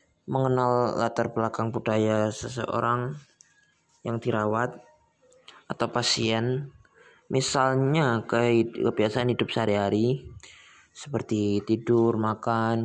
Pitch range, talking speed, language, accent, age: 105-125 Hz, 75 wpm, Indonesian, native, 20-39